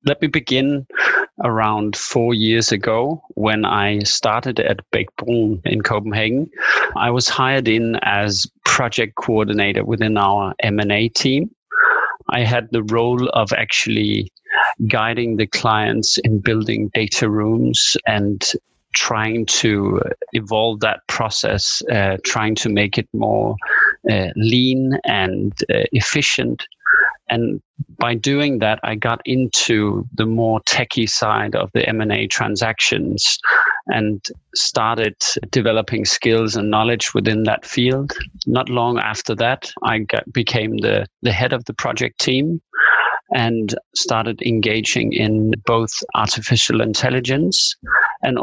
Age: 30-49